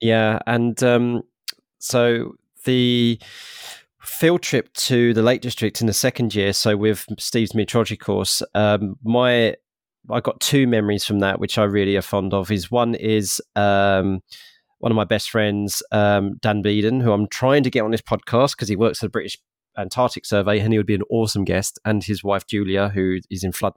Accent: British